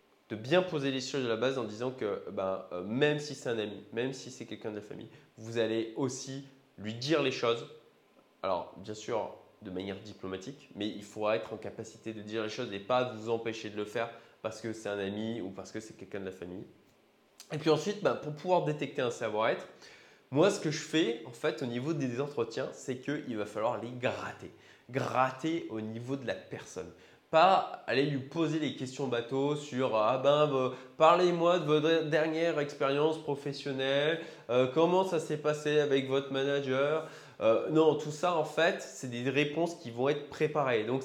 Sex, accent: male, French